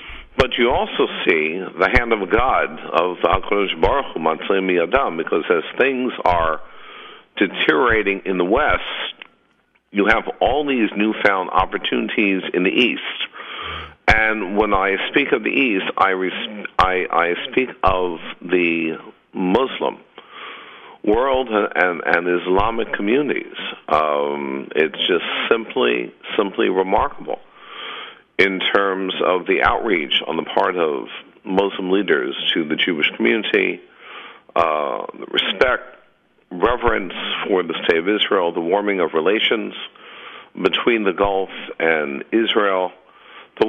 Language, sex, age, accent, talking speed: English, male, 50-69, American, 120 wpm